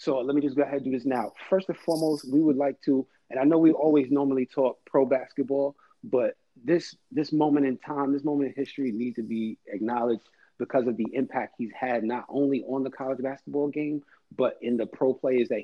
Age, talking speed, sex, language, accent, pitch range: 30-49, 225 wpm, male, English, American, 120-145 Hz